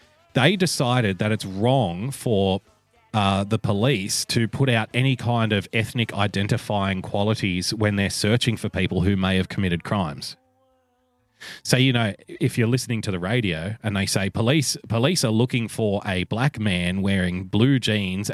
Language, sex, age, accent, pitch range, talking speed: English, male, 30-49, Australian, 100-125 Hz, 165 wpm